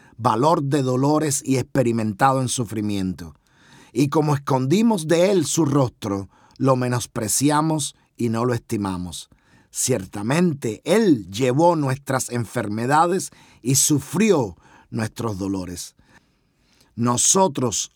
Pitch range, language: 105-140 Hz, Spanish